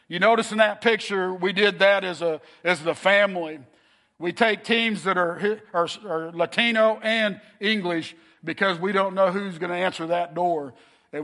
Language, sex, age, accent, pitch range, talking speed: English, male, 50-69, American, 170-205 Hz, 180 wpm